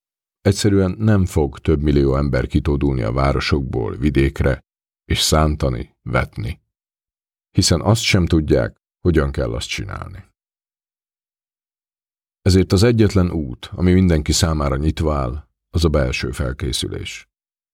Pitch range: 70-90 Hz